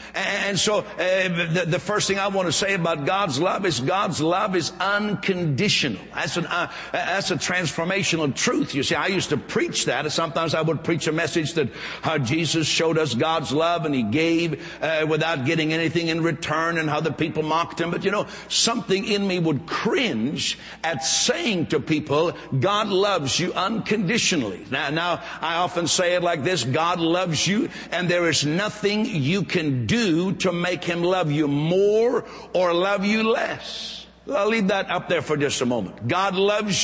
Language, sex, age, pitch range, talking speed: English, male, 60-79, 160-200 Hz, 185 wpm